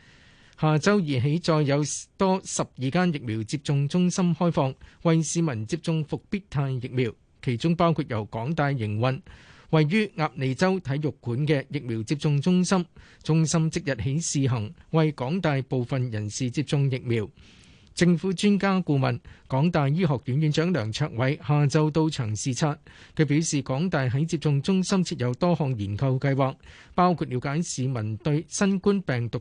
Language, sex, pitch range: Chinese, male, 130-170 Hz